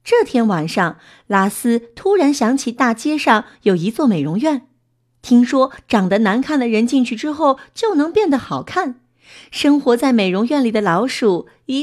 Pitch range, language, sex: 180-290 Hz, Chinese, female